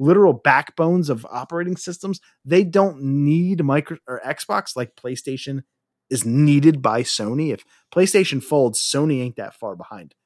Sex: male